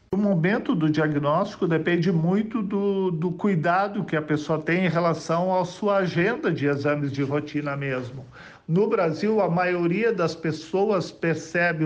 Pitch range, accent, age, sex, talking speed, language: 145-180 Hz, Brazilian, 50-69, male, 150 wpm, Portuguese